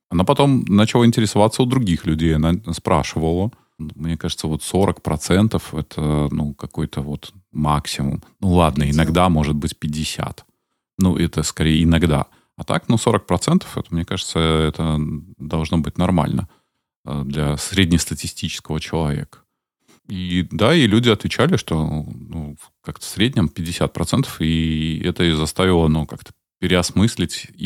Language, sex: Russian, male